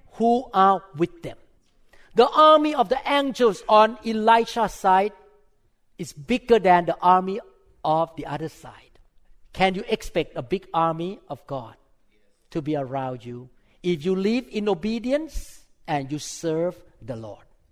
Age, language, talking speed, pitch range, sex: 50-69, English, 145 wpm, 140-190 Hz, male